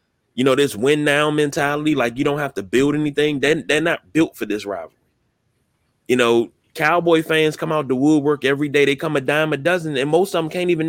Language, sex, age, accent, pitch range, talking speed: English, male, 30-49, American, 150-230 Hz, 225 wpm